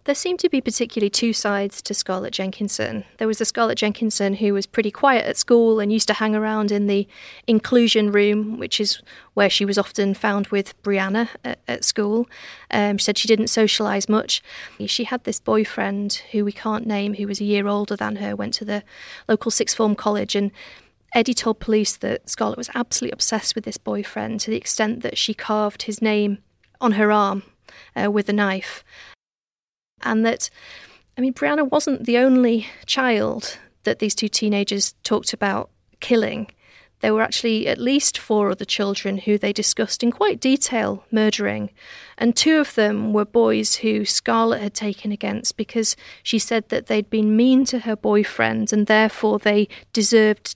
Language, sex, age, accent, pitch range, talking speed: English, female, 40-59, British, 205-230 Hz, 185 wpm